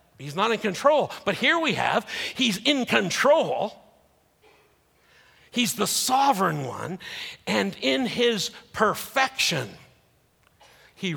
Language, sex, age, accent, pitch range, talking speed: English, male, 50-69, American, 145-210 Hz, 110 wpm